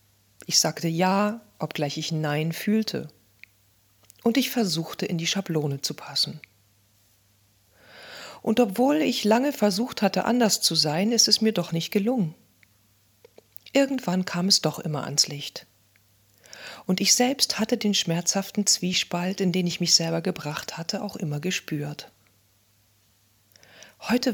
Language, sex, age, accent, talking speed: German, female, 40-59, German, 135 wpm